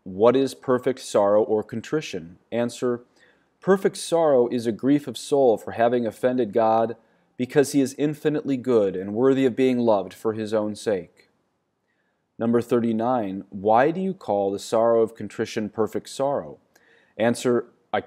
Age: 30-49